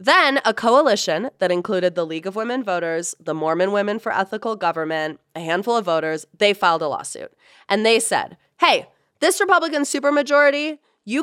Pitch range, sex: 175-265 Hz, female